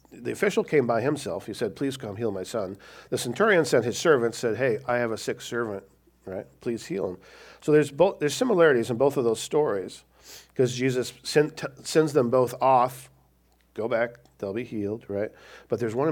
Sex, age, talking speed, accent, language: male, 50-69, 205 wpm, American, English